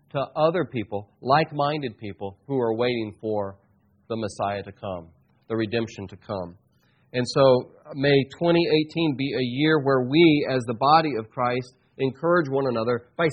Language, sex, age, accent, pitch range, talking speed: English, male, 40-59, American, 110-145 Hz, 160 wpm